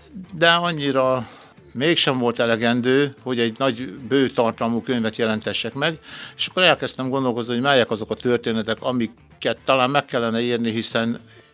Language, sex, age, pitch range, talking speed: Hungarian, male, 60-79, 110-130 Hz, 145 wpm